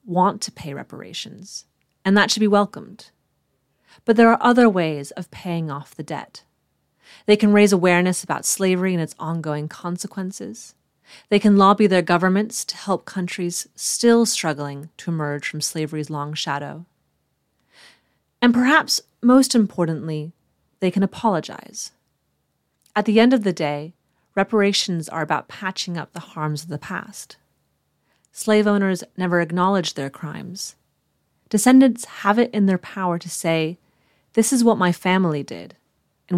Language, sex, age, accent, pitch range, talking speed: English, female, 30-49, American, 165-210 Hz, 145 wpm